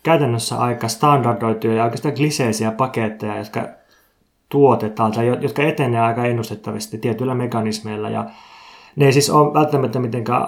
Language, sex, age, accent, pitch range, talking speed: Finnish, male, 20-39, native, 115-135 Hz, 130 wpm